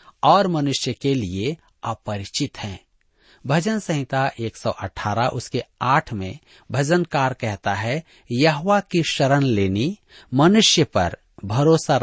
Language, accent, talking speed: Hindi, native, 110 wpm